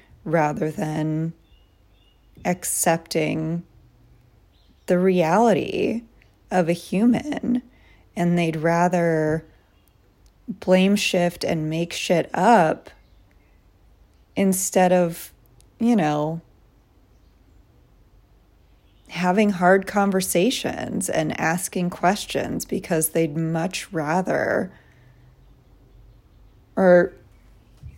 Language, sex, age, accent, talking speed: English, female, 30-49, American, 70 wpm